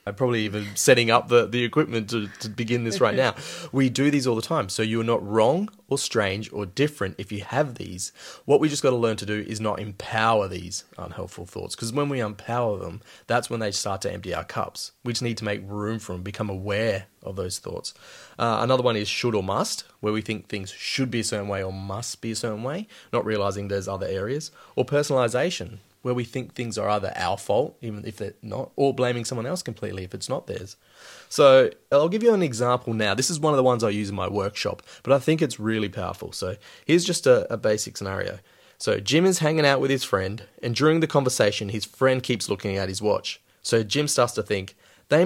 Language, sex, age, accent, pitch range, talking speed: English, male, 20-39, Australian, 100-130 Hz, 235 wpm